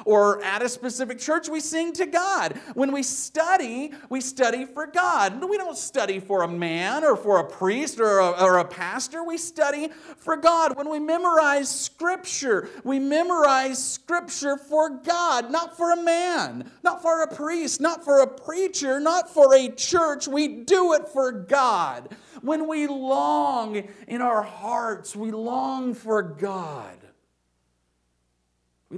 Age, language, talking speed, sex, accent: 50-69, English, 155 wpm, male, American